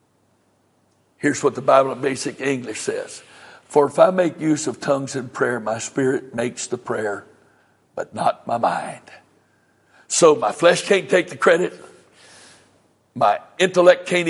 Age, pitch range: 60-79, 140-170 Hz